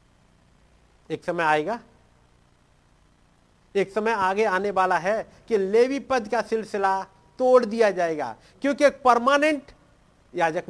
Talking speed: 110 wpm